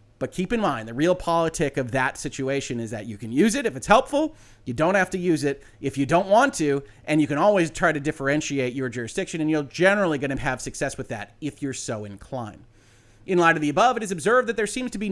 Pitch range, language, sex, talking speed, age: 125-190 Hz, English, male, 260 wpm, 30-49